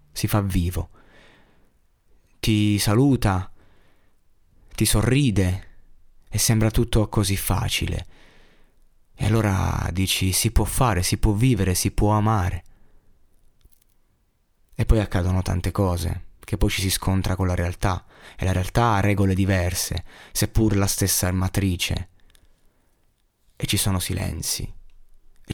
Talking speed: 120 wpm